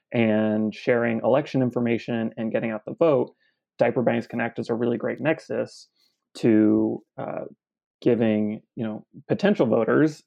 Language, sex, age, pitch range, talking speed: English, male, 30-49, 110-125 Hz, 140 wpm